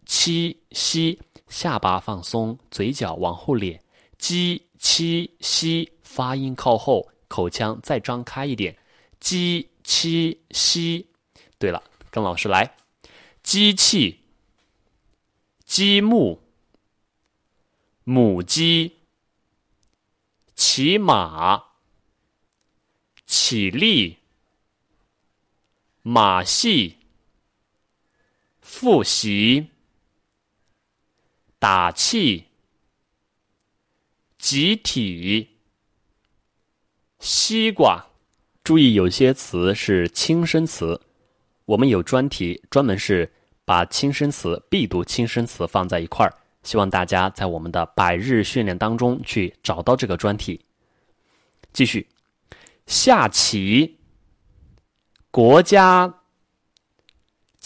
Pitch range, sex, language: 100-165 Hz, male, Chinese